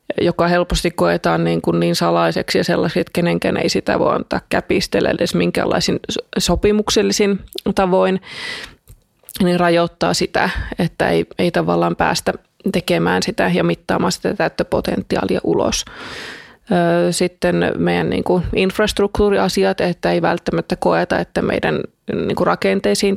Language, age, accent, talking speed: Finnish, 20-39, native, 110 wpm